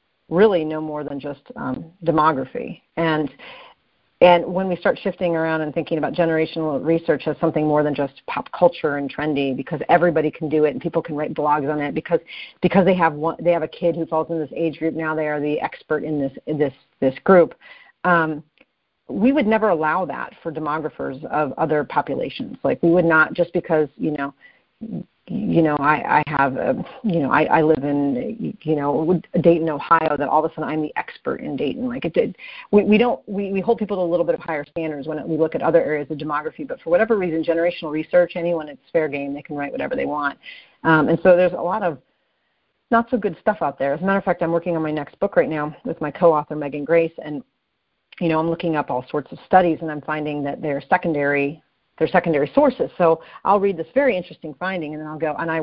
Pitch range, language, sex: 150-180 Hz, English, female